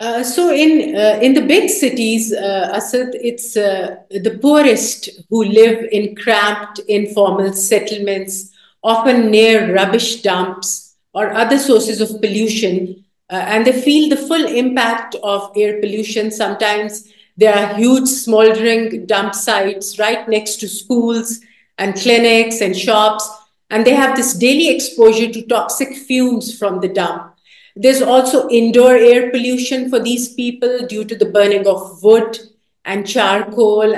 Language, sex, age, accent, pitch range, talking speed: English, female, 50-69, Indian, 205-245 Hz, 145 wpm